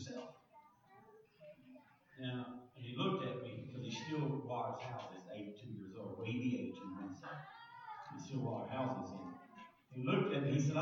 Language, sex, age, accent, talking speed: English, male, 50-69, American, 170 wpm